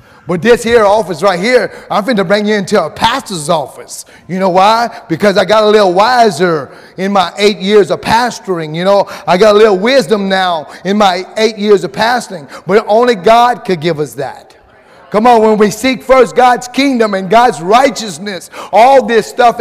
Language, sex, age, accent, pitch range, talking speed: English, male, 30-49, American, 205-285 Hz, 200 wpm